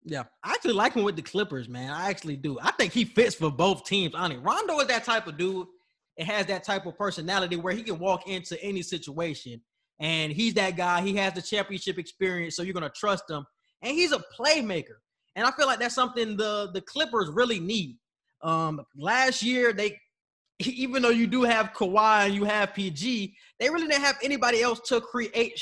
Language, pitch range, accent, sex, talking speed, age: English, 165-220 Hz, American, male, 220 wpm, 20-39